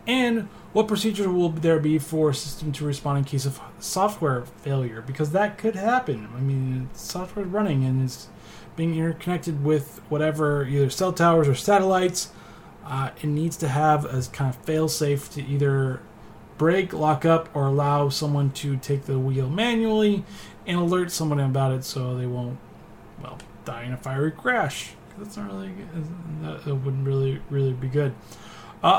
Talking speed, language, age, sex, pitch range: 175 wpm, English, 20-39, male, 135-180 Hz